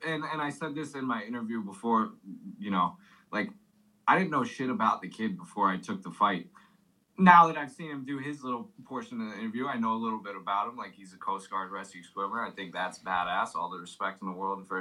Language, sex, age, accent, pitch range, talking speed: English, male, 20-39, American, 100-140 Hz, 245 wpm